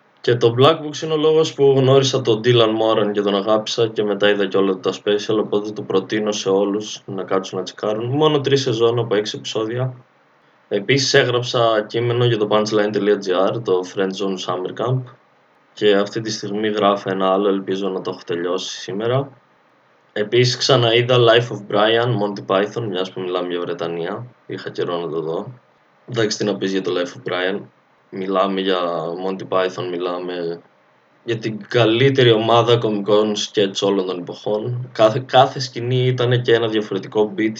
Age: 20-39